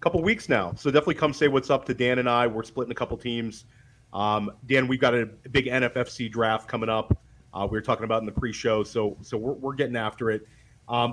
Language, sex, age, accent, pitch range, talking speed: English, male, 30-49, American, 115-135 Hz, 235 wpm